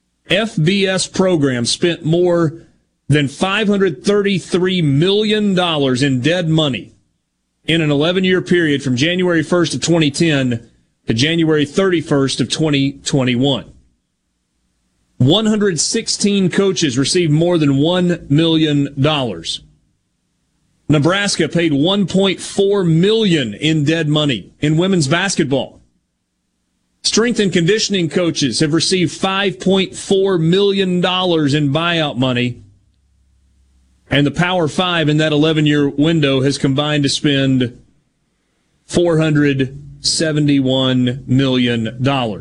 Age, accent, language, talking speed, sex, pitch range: 40-59, American, English, 95 wpm, male, 140-180 Hz